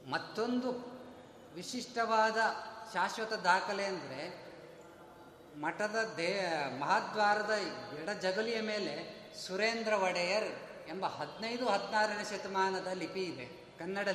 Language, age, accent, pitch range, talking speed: Kannada, 30-49, native, 170-210 Hz, 85 wpm